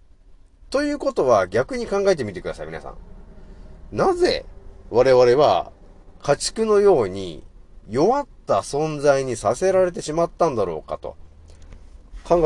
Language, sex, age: Japanese, male, 40-59